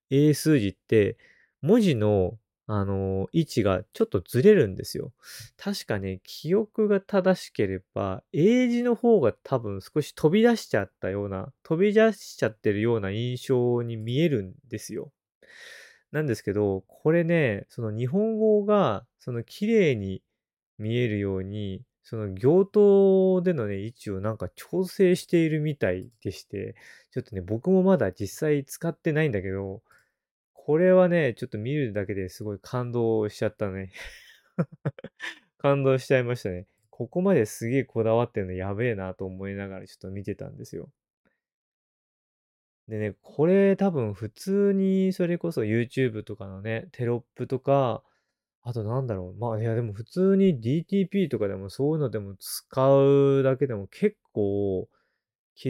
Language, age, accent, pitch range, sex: Japanese, 20-39, native, 100-170 Hz, male